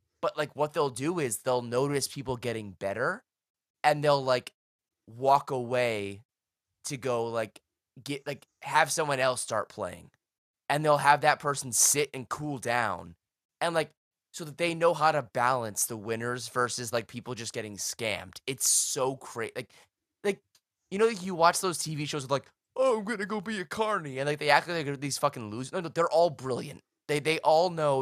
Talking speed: 195 wpm